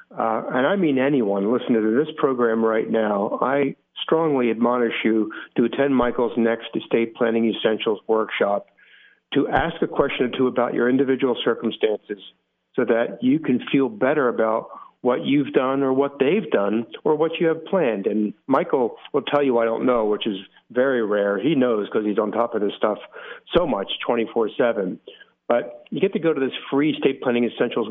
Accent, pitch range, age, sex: American, 110-135 Hz, 50-69, male